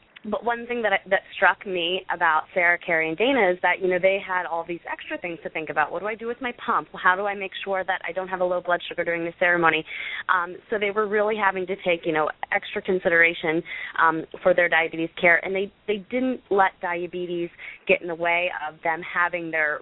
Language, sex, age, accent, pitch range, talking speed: English, female, 20-39, American, 165-190 Hz, 240 wpm